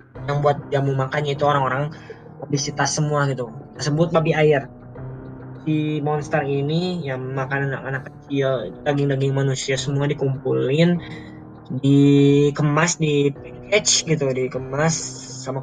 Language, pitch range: Indonesian, 130-150 Hz